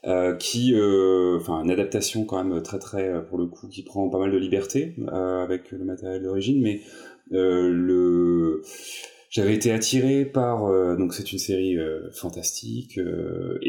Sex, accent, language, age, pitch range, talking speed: male, French, French, 30-49, 90-105 Hz, 170 wpm